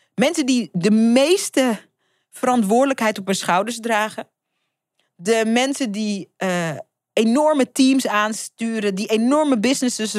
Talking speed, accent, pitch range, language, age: 110 wpm, Dutch, 190-260 Hz, Dutch, 30-49